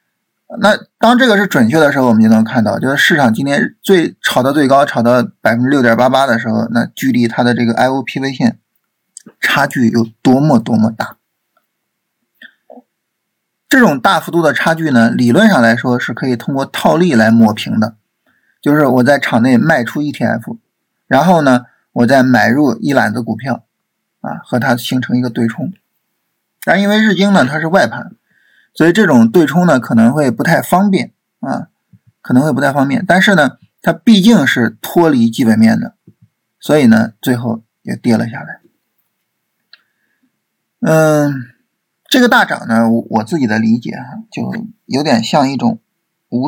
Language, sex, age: Chinese, male, 50-69